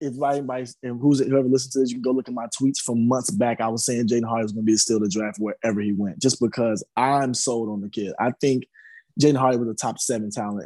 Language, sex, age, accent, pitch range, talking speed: English, male, 20-39, American, 105-135 Hz, 280 wpm